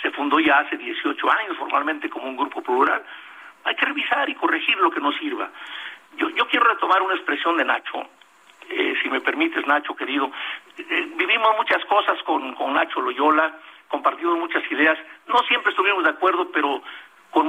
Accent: Mexican